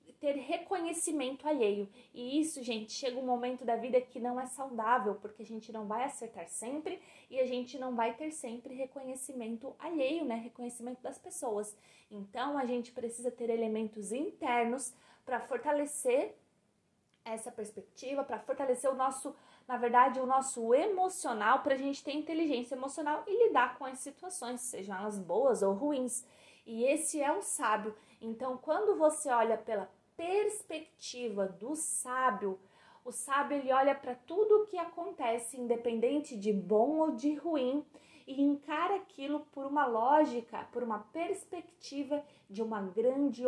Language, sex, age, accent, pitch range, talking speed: Portuguese, female, 20-39, Brazilian, 235-300 Hz, 155 wpm